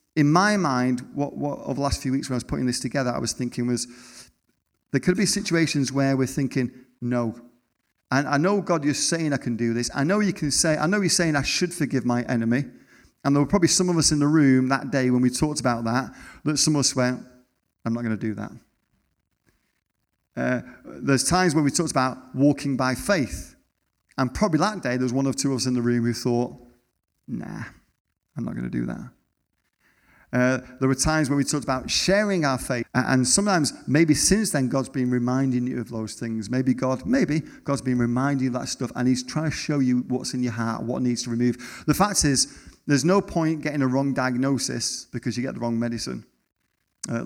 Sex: male